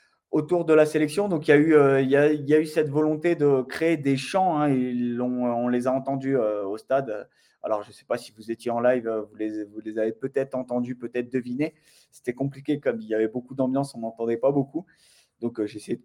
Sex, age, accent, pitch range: male, 20-39, French, 120-145 Hz